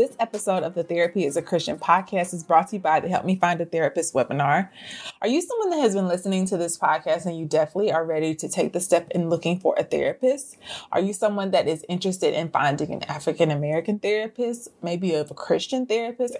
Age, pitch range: 20-39, 170-230 Hz